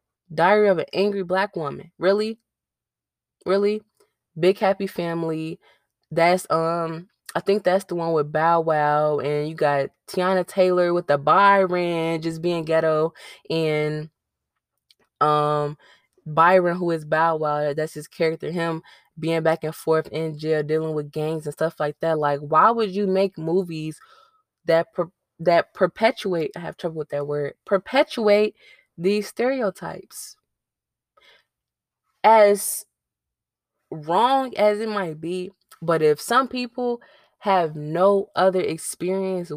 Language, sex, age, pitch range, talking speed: English, female, 20-39, 155-190 Hz, 135 wpm